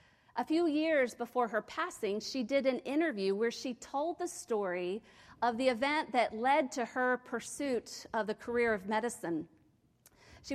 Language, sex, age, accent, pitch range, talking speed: English, female, 40-59, American, 230-275 Hz, 165 wpm